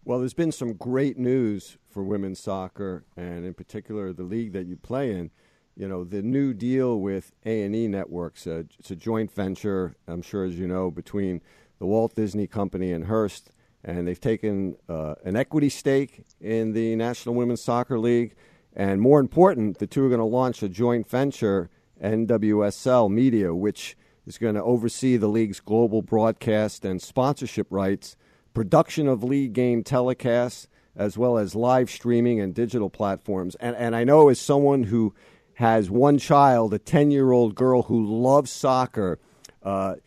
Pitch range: 100-130 Hz